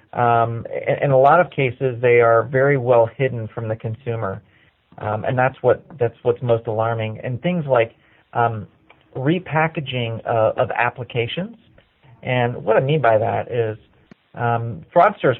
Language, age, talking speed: English, 40-59, 150 wpm